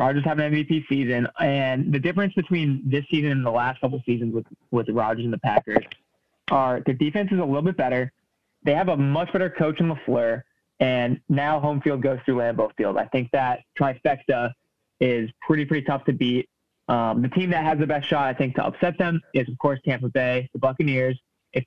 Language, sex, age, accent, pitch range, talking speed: English, male, 20-39, American, 125-150 Hz, 215 wpm